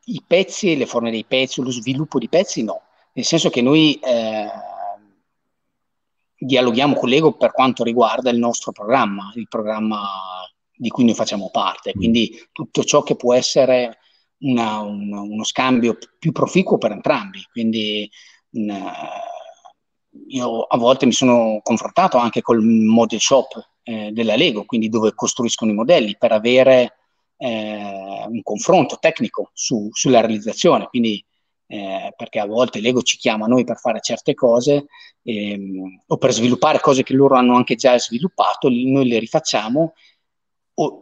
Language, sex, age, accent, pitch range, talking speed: Italian, male, 30-49, native, 105-130 Hz, 150 wpm